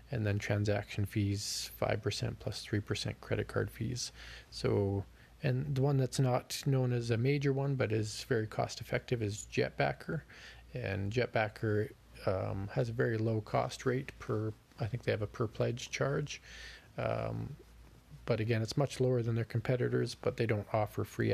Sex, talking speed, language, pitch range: male, 170 wpm, English, 105-125 Hz